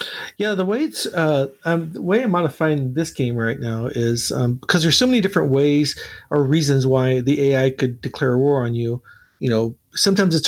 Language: English